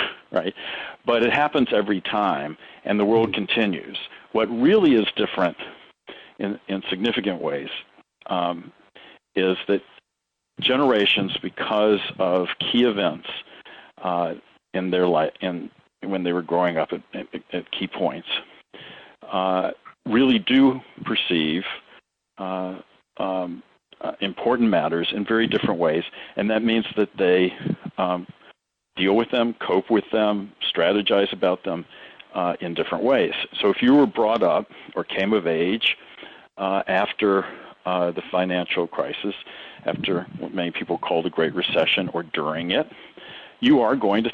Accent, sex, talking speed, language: American, male, 140 wpm, English